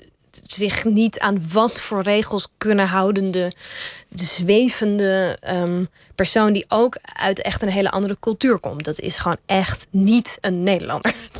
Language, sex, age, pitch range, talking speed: Dutch, female, 20-39, 180-205 Hz, 155 wpm